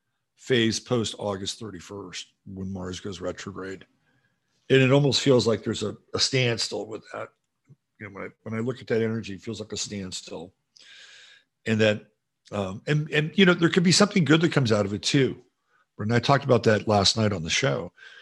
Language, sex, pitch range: English, male, 100-130 Hz